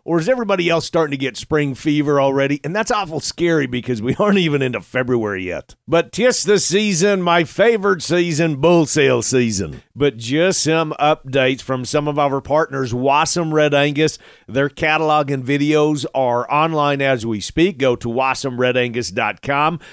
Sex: male